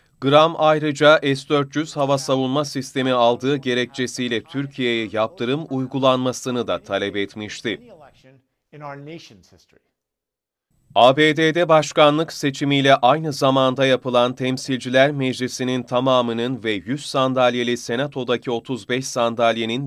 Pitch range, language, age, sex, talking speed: 115-140 Hz, Turkish, 30-49, male, 90 wpm